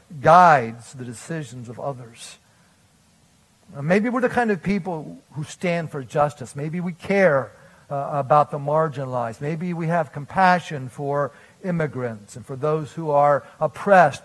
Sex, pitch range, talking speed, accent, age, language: male, 145-195 Hz, 145 wpm, American, 50-69, English